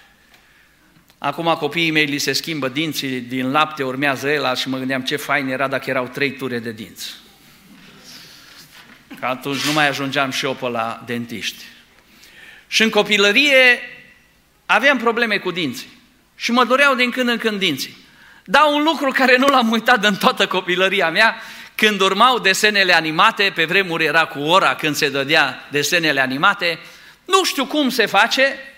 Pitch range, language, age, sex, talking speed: 150-245 Hz, Romanian, 40-59, male, 165 wpm